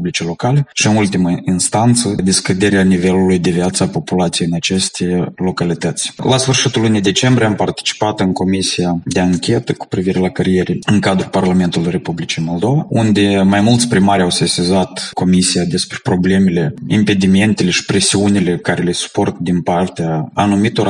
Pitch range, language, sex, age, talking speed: 90-115 Hz, Romanian, male, 20-39, 145 wpm